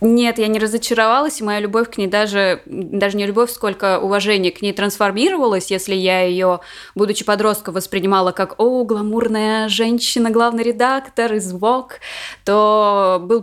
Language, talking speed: Russian, 150 wpm